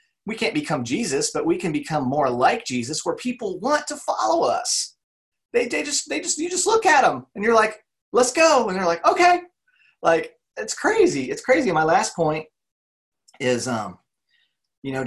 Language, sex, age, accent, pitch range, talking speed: English, male, 30-49, American, 110-180 Hz, 190 wpm